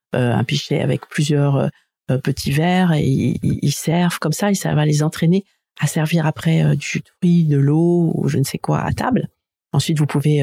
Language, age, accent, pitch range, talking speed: French, 50-69, French, 145-180 Hz, 215 wpm